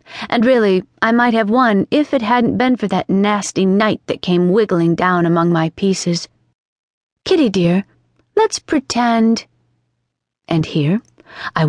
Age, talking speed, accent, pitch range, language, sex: 40-59, 145 wpm, American, 175-250 Hz, English, female